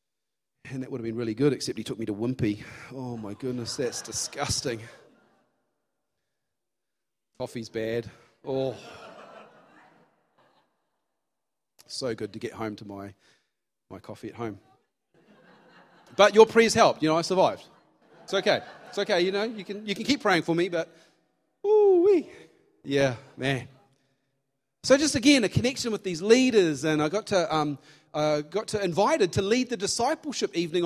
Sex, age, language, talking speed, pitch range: male, 30-49, English, 155 wpm, 130-185 Hz